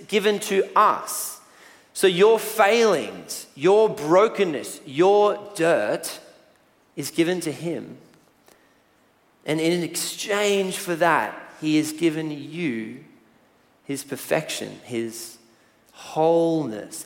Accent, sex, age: Australian, male, 30-49